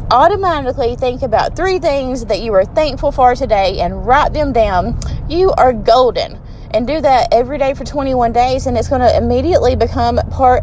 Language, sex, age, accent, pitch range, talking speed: English, female, 30-49, American, 205-310 Hz, 185 wpm